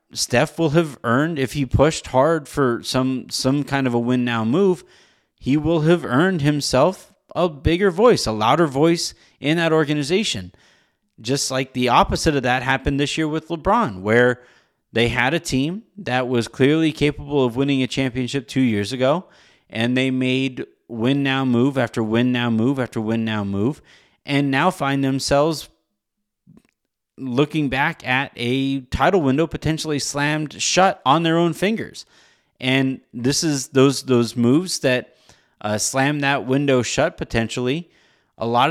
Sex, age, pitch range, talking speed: male, 30-49, 120-155 Hz, 155 wpm